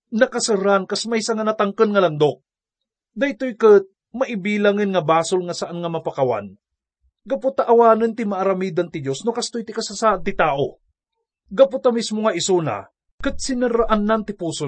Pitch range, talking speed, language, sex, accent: 160-225 Hz, 155 wpm, English, male, Filipino